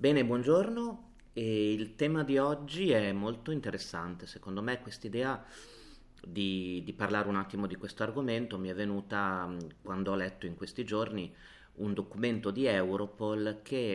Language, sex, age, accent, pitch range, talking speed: Italian, male, 30-49, native, 95-115 Hz, 155 wpm